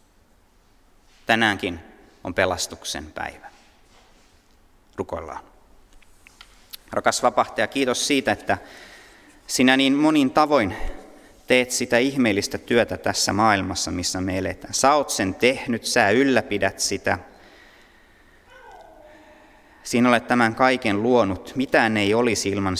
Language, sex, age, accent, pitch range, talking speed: Finnish, male, 30-49, native, 95-130 Hz, 105 wpm